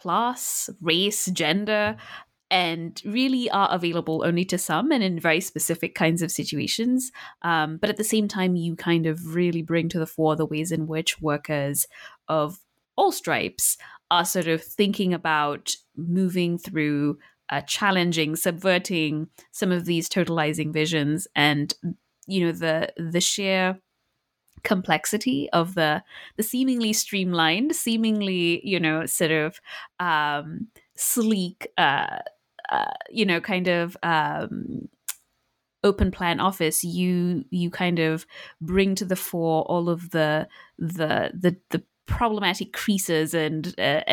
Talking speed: 135 wpm